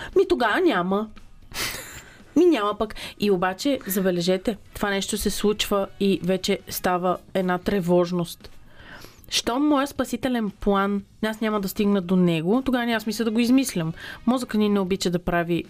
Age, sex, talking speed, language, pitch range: 30-49, female, 155 wpm, Bulgarian, 190-255 Hz